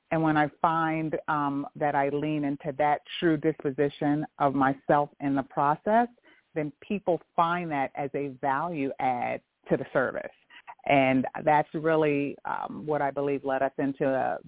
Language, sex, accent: English, female, American